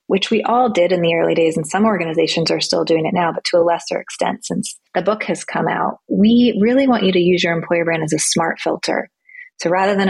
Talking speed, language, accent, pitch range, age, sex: 255 wpm, English, American, 170-195 Hz, 20-39, female